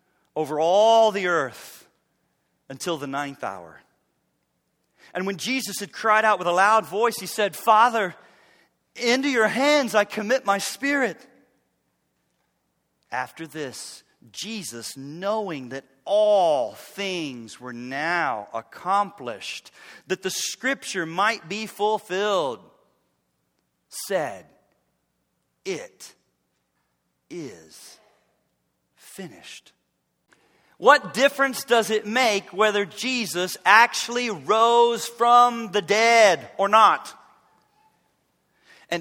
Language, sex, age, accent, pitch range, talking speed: English, male, 40-59, American, 175-225 Hz, 95 wpm